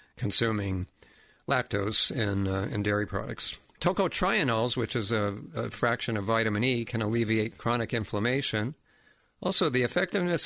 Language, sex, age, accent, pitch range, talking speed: English, male, 50-69, American, 105-130 Hz, 130 wpm